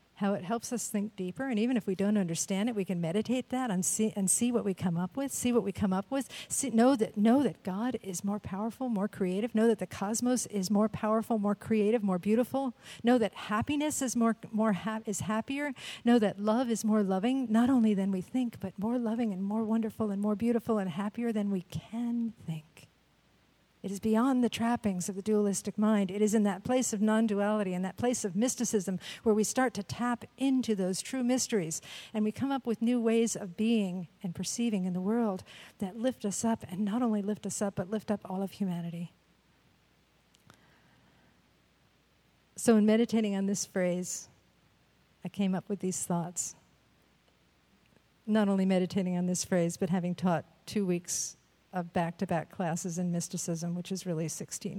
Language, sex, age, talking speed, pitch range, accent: English, female, 50-69, 200 wpm, 185-225 Hz, American